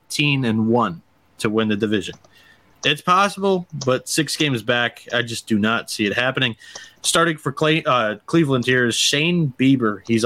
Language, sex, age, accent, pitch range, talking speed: English, male, 30-49, American, 115-140 Hz, 170 wpm